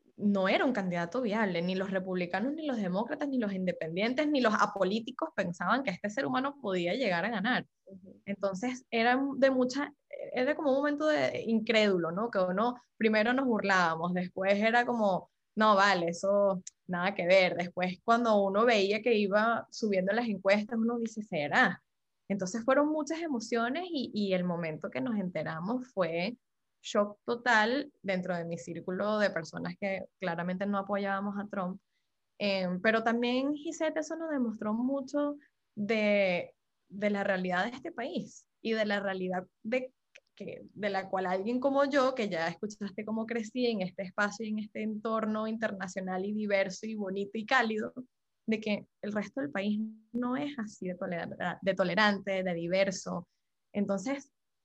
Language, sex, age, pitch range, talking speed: Spanish, female, 10-29, 190-245 Hz, 165 wpm